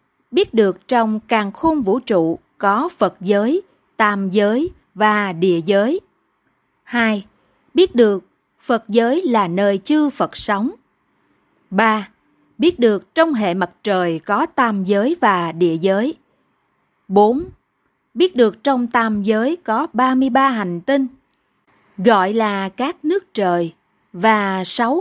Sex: female